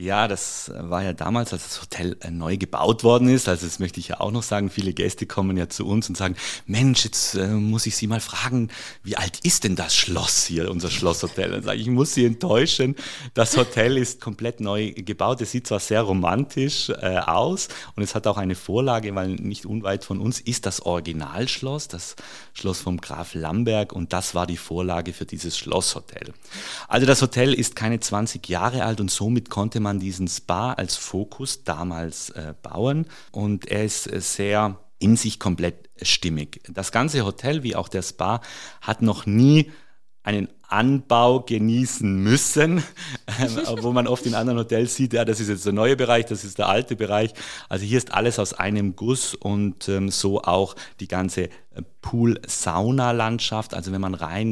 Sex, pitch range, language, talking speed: male, 95-120 Hz, German, 190 wpm